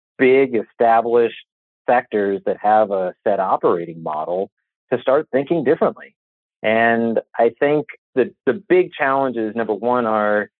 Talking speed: 130 wpm